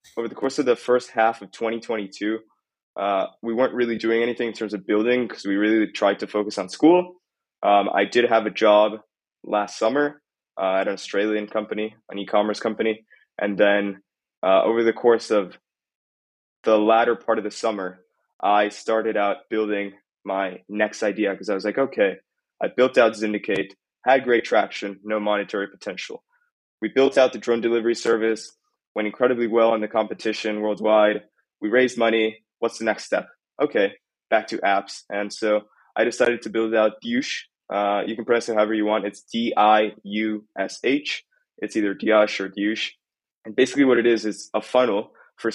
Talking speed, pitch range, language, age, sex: 175 wpm, 105-120 Hz, English, 20-39, male